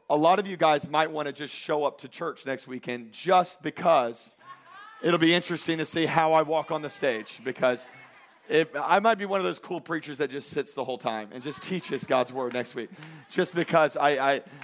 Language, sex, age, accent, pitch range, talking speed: English, male, 40-59, American, 150-205 Hz, 225 wpm